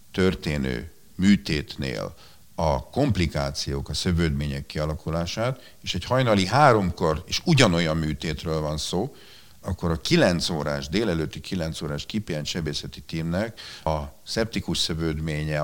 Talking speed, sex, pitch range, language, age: 110 wpm, male, 75-100 Hz, Hungarian, 50-69